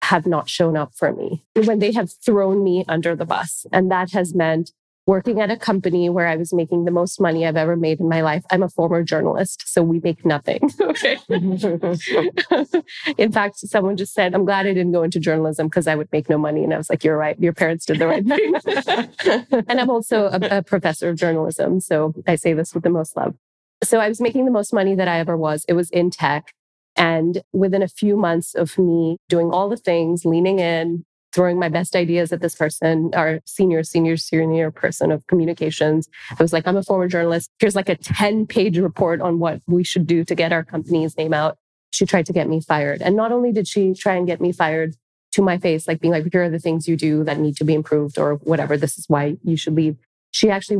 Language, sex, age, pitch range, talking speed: English, female, 20-39, 160-195 Hz, 235 wpm